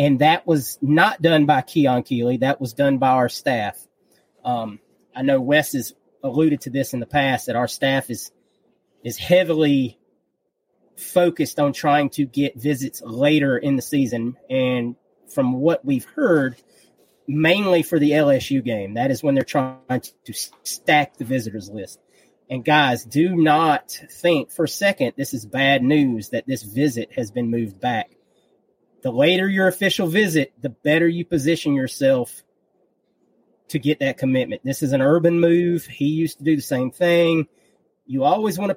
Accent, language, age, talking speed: American, English, 30-49, 170 wpm